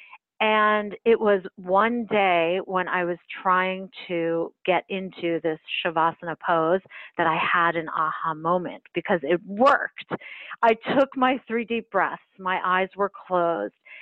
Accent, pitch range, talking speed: American, 180-230 Hz, 145 wpm